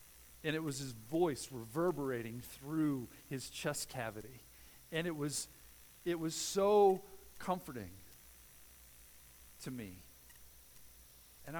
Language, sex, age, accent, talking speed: English, male, 50-69, American, 105 wpm